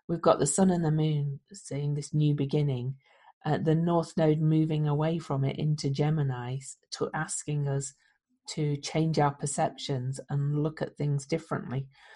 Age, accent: 40-59, British